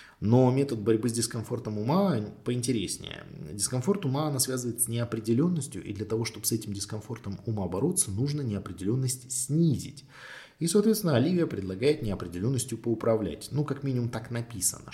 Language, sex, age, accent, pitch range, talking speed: Russian, male, 20-39, native, 105-140 Hz, 145 wpm